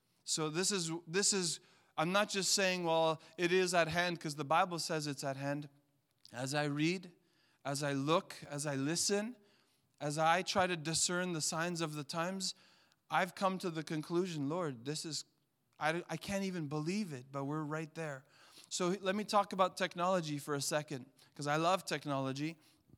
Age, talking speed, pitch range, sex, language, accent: 30-49, 185 wpm, 140-170 Hz, male, English, American